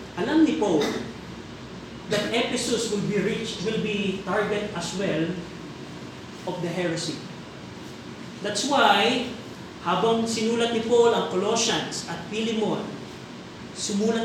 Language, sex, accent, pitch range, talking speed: Filipino, male, native, 185-215 Hz, 115 wpm